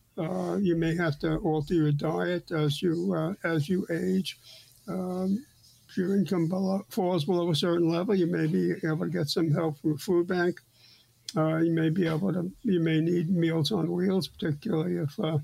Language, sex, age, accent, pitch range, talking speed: English, male, 60-79, American, 150-185 Hz, 195 wpm